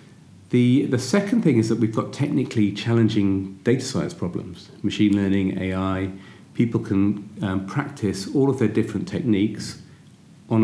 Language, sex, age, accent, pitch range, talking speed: English, male, 40-59, British, 100-125 Hz, 145 wpm